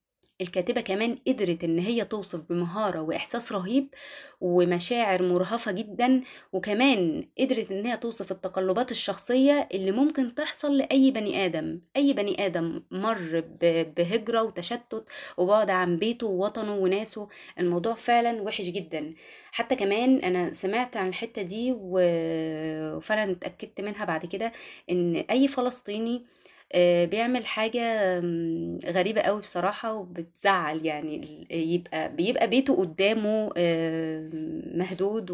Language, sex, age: Arabic, female, 20-39